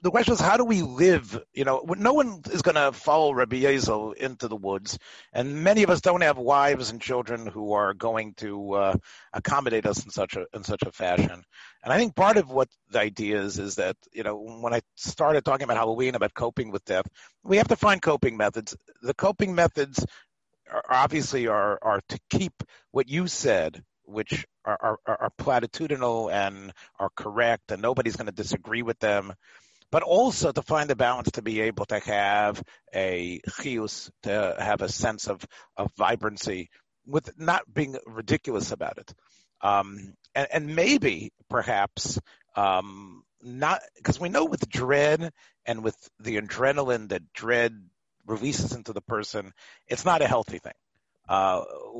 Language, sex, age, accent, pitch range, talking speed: English, male, 40-59, American, 105-150 Hz, 175 wpm